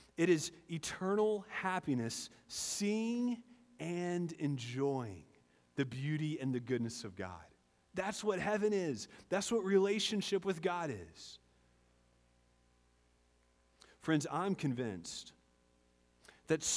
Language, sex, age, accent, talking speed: English, male, 30-49, American, 100 wpm